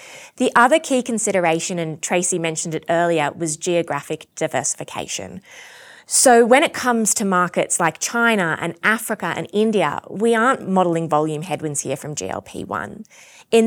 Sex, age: female, 20-39